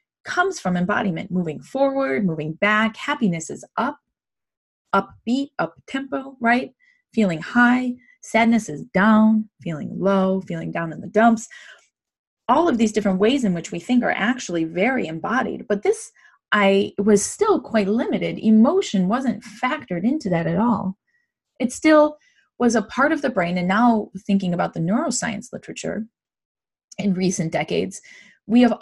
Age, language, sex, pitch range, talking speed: 20-39, English, female, 180-245 Hz, 150 wpm